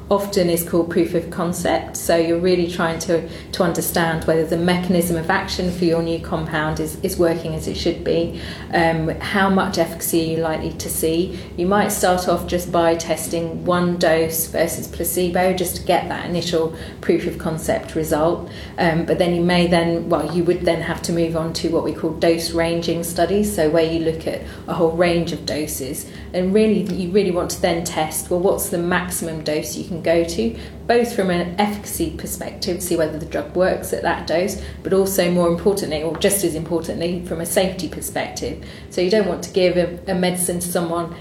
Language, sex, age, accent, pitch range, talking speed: English, female, 30-49, British, 165-180 Hz, 205 wpm